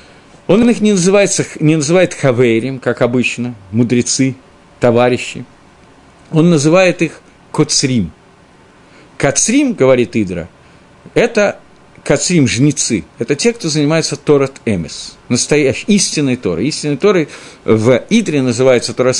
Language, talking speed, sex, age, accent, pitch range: Russian, 105 wpm, male, 50-69, native, 125-185 Hz